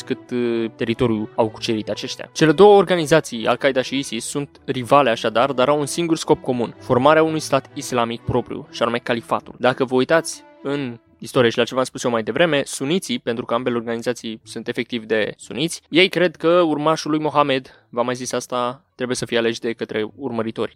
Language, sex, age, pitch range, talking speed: Romanian, male, 20-39, 120-145 Hz, 190 wpm